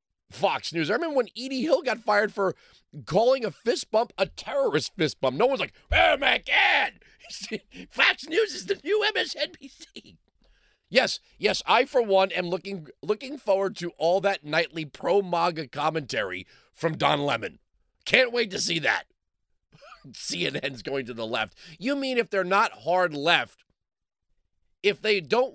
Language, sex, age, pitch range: English, male, 30-49, 130-215 Hz